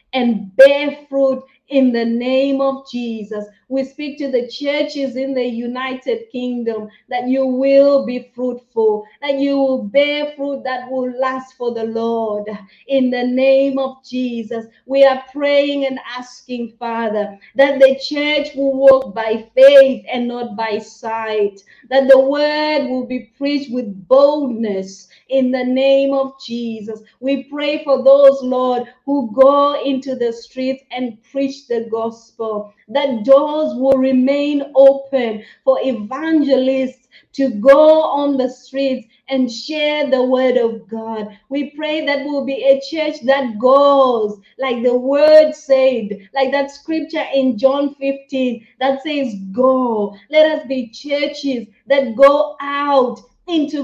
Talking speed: 145 wpm